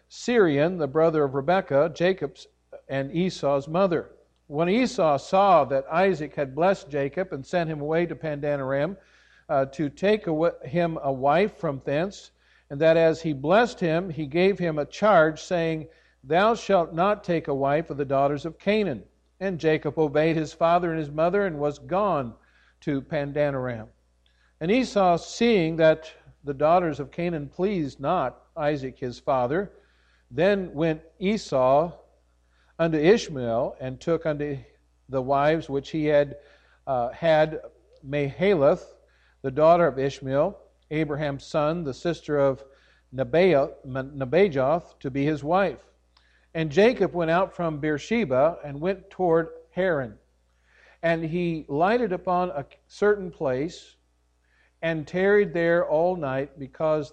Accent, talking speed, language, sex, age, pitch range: American, 140 wpm, English, male, 50-69, 140-175 Hz